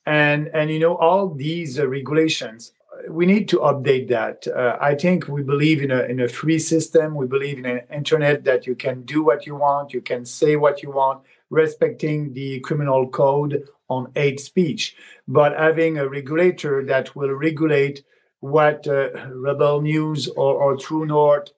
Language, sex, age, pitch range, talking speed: English, male, 50-69, 135-160 Hz, 180 wpm